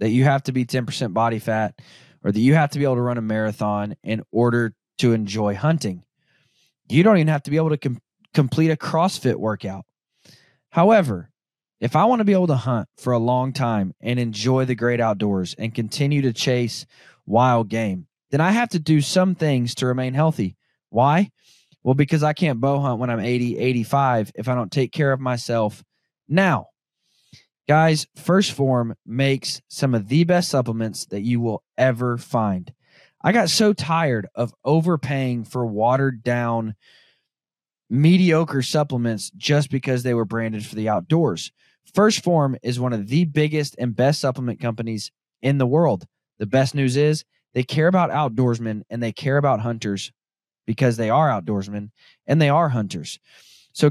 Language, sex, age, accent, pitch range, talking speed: English, male, 20-39, American, 115-150 Hz, 175 wpm